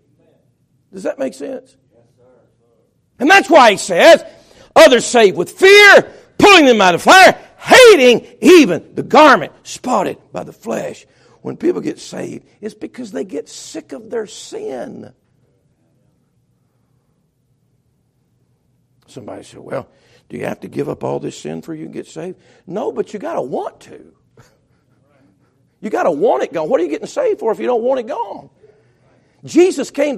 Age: 50-69